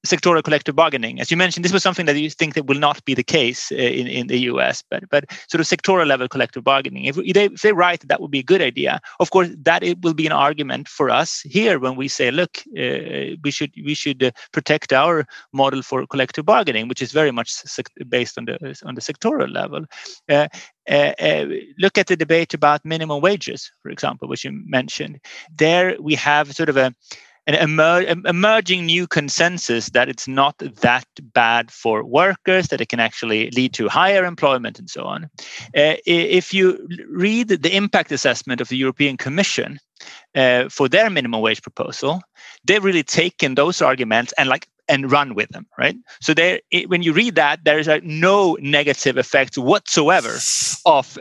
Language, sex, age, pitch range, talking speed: Swedish, male, 30-49, 135-180 Hz, 200 wpm